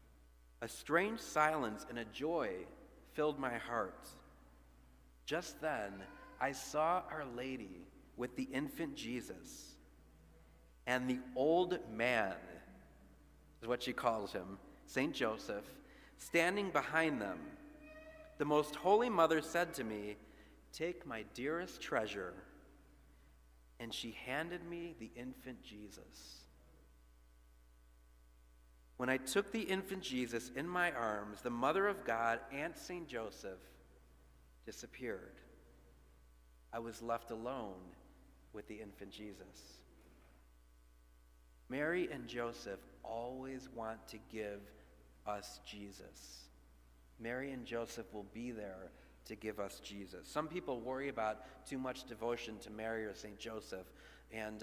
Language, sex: English, male